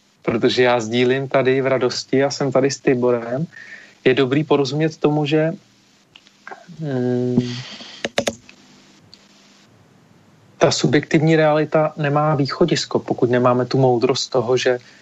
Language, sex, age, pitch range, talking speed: Slovak, male, 40-59, 130-150 Hz, 110 wpm